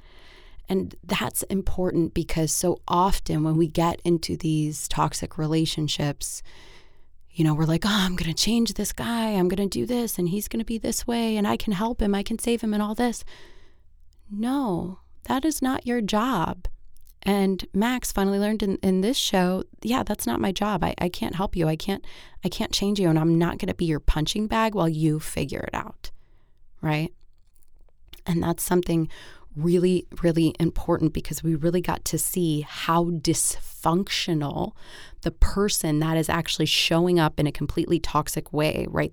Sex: female